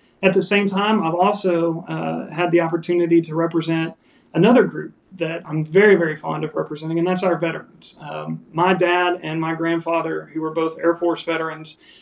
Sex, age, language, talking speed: male, 40-59, English, 185 wpm